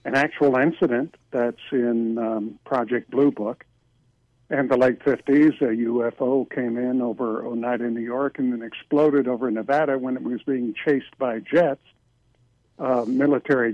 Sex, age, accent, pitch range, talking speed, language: male, 60-79, American, 120-145 Hz, 155 wpm, English